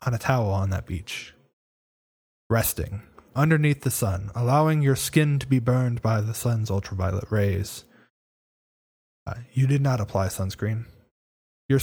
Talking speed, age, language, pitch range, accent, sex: 140 wpm, 20-39, English, 100-140 Hz, American, male